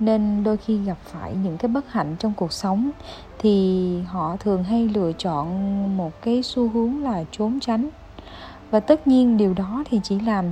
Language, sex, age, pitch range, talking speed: Vietnamese, female, 20-39, 190-245 Hz, 190 wpm